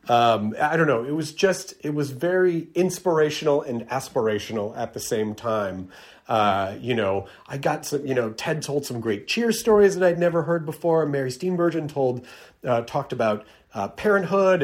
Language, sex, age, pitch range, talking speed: English, male, 30-49, 115-165 Hz, 180 wpm